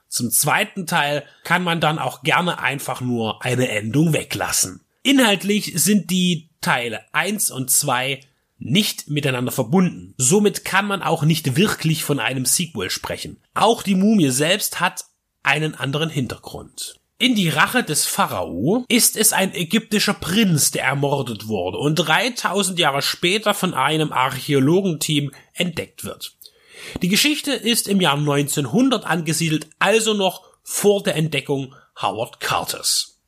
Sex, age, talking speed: male, 30-49, 140 wpm